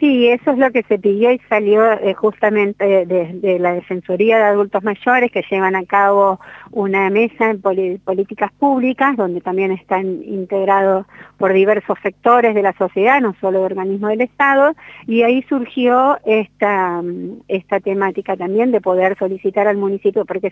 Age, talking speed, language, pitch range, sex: 40-59, 165 wpm, Spanish, 190-220 Hz, female